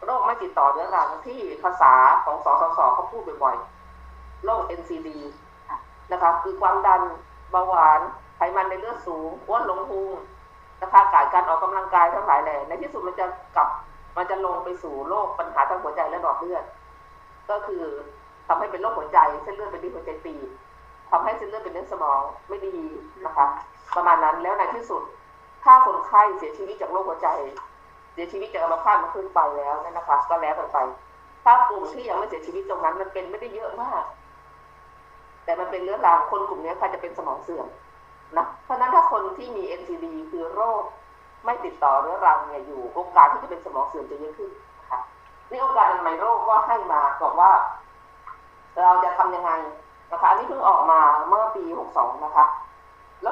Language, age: Thai, 20-39